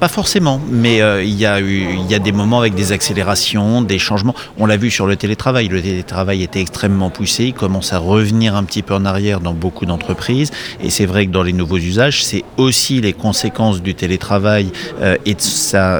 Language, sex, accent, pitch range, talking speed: French, male, French, 100-125 Hz, 220 wpm